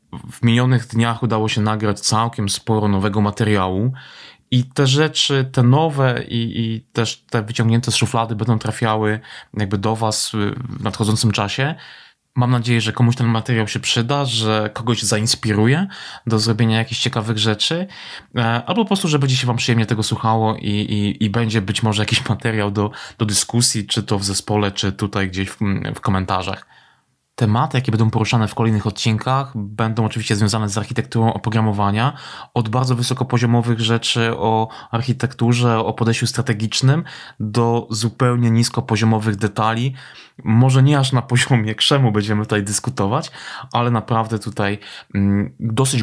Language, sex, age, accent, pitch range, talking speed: Polish, male, 20-39, native, 110-120 Hz, 150 wpm